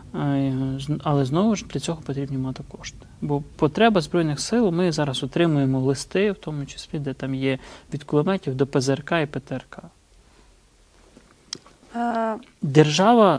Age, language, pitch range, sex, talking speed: 30-49, Ukrainian, 135-170 Hz, male, 135 wpm